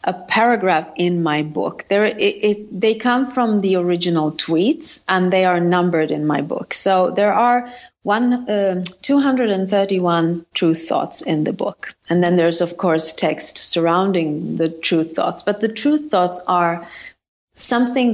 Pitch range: 175-215 Hz